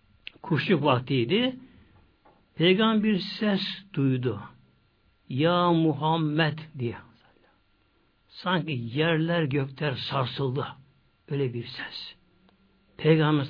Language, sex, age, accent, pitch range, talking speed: Turkish, male, 60-79, native, 140-195 Hz, 70 wpm